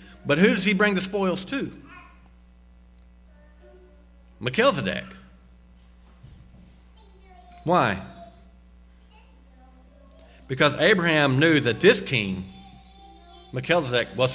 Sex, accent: male, American